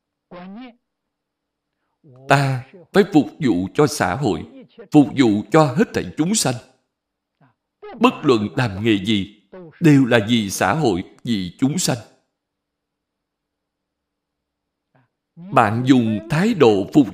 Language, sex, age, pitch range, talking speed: Vietnamese, male, 60-79, 105-180 Hz, 110 wpm